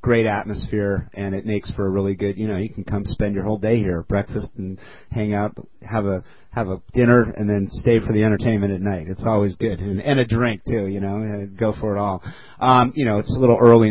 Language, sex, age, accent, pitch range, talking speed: English, male, 30-49, American, 100-115 Hz, 250 wpm